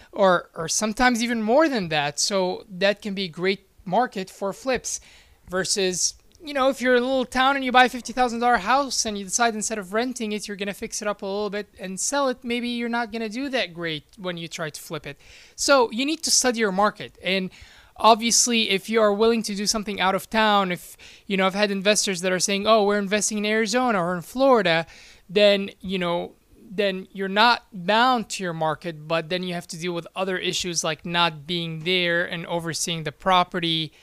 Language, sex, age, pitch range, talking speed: English, male, 20-39, 170-220 Hz, 220 wpm